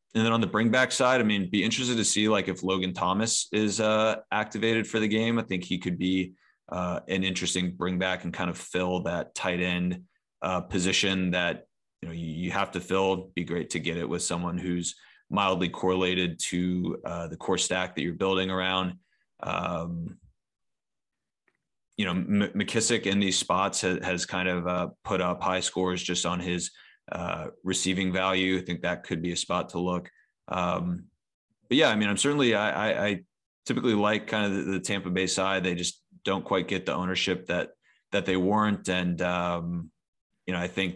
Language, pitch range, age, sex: English, 90-95 Hz, 20-39, male